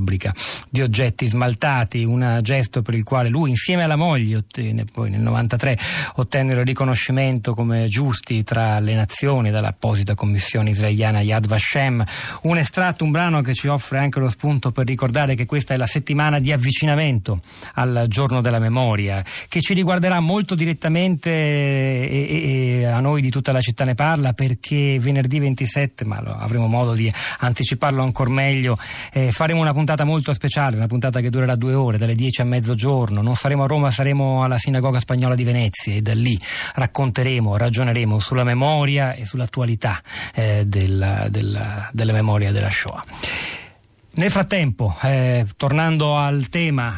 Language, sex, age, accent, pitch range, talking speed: Italian, male, 40-59, native, 115-140 Hz, 160 wpm